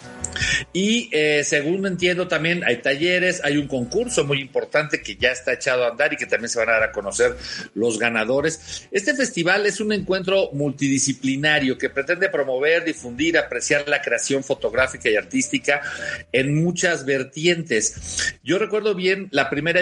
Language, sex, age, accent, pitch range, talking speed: Spanish, male, 50-69, Mexican, 135-180 Hz, 160 wpm